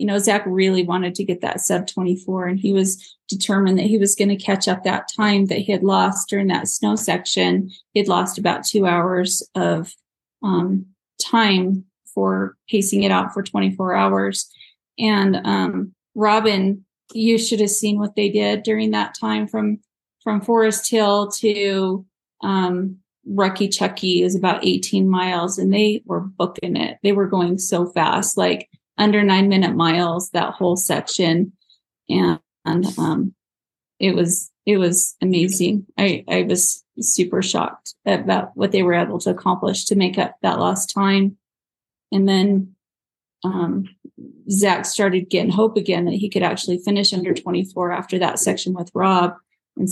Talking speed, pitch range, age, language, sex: 165 wpm, 180-205 Hz, 30-49, English, female